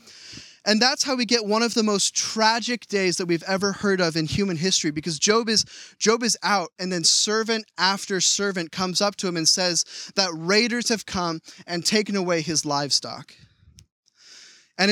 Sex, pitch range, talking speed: male, 155-195 Hz, 185 wpm